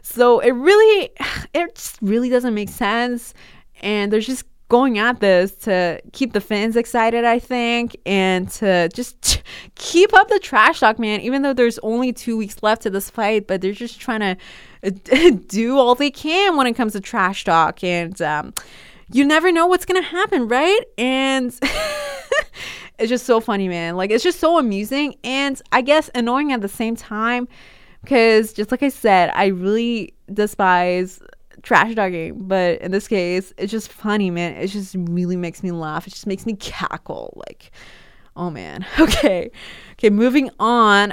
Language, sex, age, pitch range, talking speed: English, female, 20-39, 195-265 Hz, 175 wpm